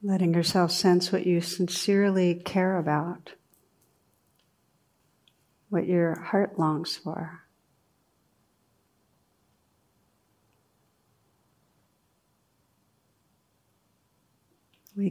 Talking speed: 55 wpm